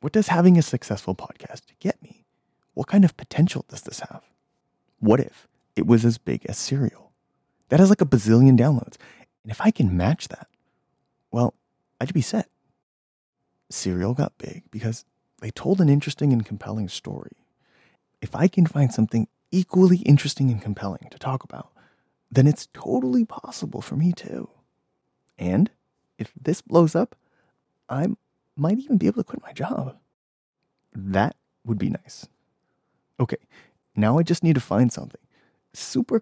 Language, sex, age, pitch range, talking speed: English, male, 30-49, 110-165 Hz, 160 wpm